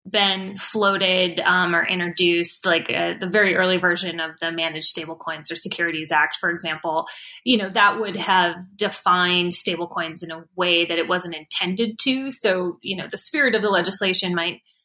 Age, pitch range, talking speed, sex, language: 20-39, 170-205 Hz, 185 wpm, female, English